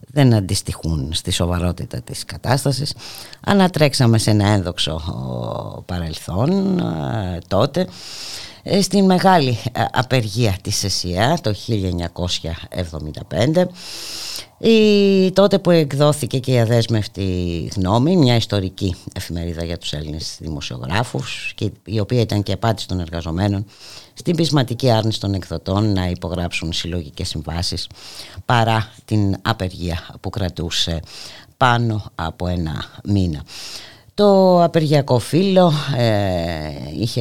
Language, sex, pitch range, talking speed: Greek, female, 90-125 Hz, 100 wpm